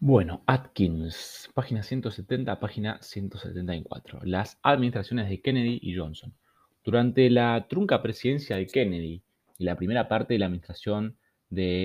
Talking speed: 130 wpm